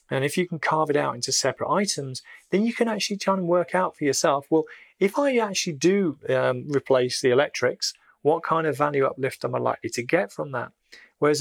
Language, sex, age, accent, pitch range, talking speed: English, male, 30-49, British, 120-150 Hz, 220 wpm